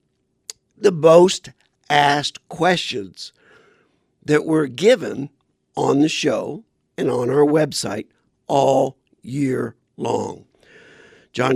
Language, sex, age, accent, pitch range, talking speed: English, male, 50-69, American, 135-165 Hz, 95 wpm